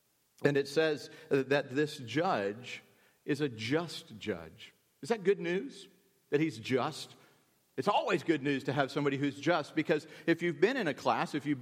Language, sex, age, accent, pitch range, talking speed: English, male, 50-69, American, 135-170 Hz, 180 wpm